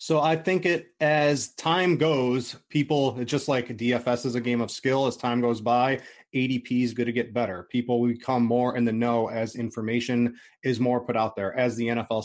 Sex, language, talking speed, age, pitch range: male, English, 210 wpm, 30-49, 120-140 Hz